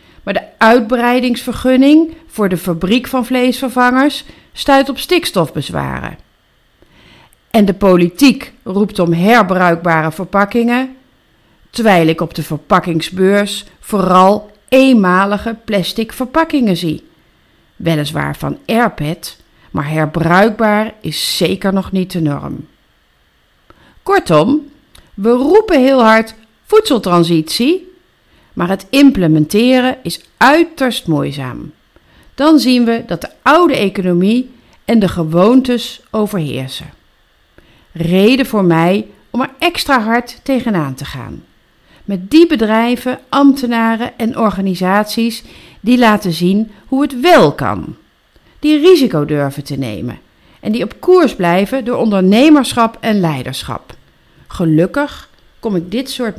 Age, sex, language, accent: 40-59, female, English, Dutch